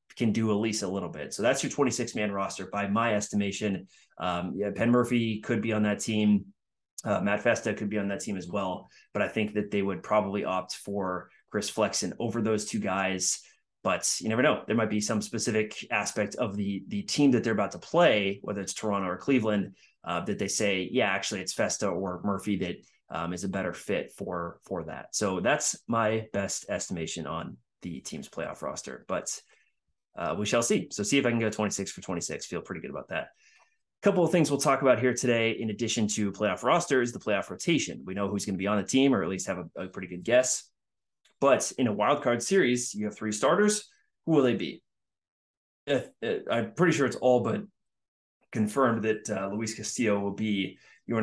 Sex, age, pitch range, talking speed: male, 20-39, 100-120 Hz, 215 wpm